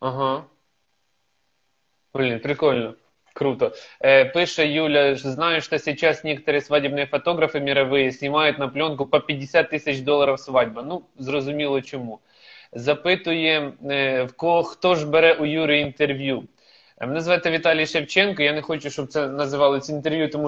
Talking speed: 140 wpm